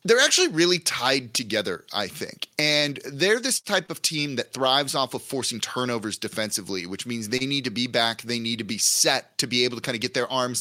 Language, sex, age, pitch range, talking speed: English, male, 30-49, 120-155 Hz, 230 wpm